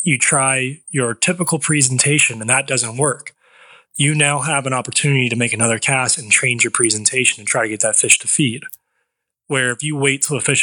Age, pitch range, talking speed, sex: 20-39, 120-145 Hz, 210 wpm, male